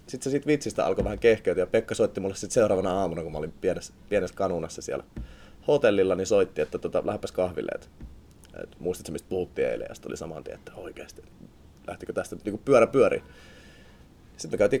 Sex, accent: male, native